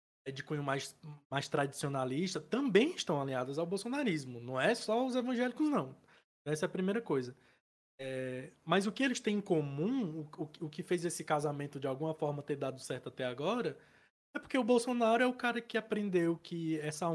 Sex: male